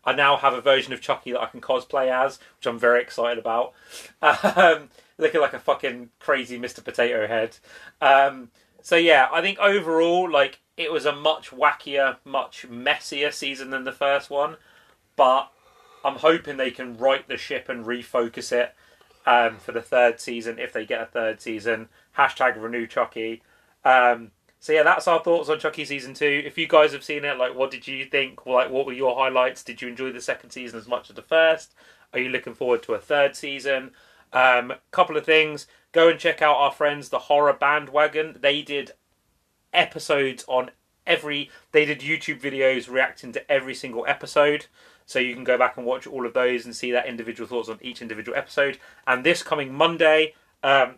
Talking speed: 195 wpm